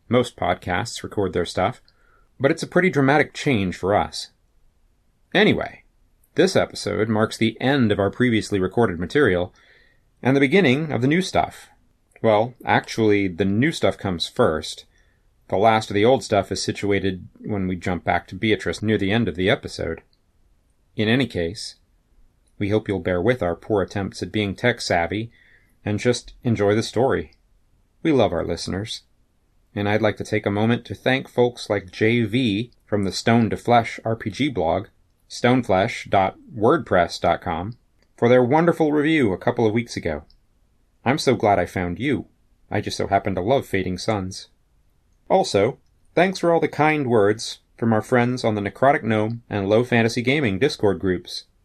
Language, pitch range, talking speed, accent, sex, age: English, 95-120 Hz, 165 wpm, American, male, 30-49